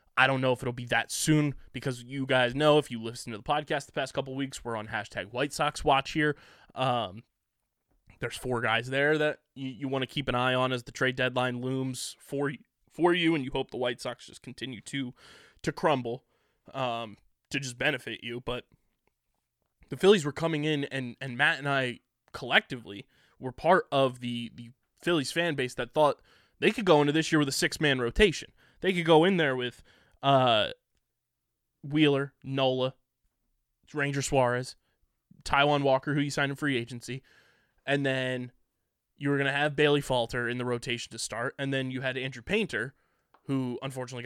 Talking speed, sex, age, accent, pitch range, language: 190 wpm, male, 20-39, American, 125-145 Hz, English